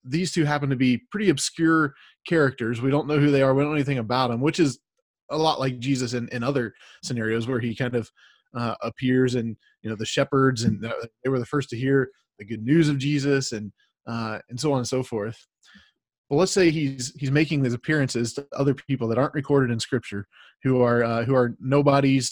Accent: American